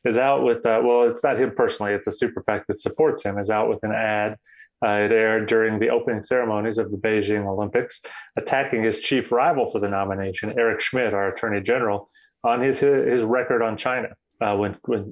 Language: English